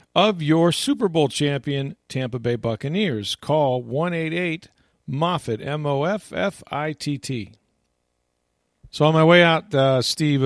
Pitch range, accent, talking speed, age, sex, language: 110-140 Hz, American, 120 wpm, 40-59, male, English